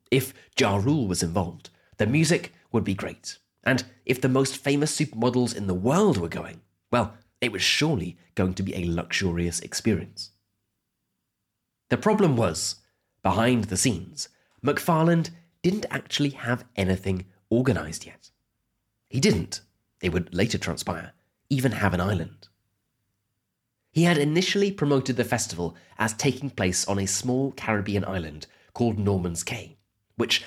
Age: 30-49